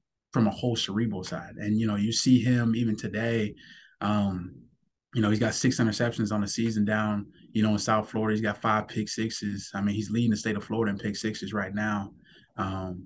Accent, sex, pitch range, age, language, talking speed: American, male, 100-110 Hz, 20-39, English, 220 wpm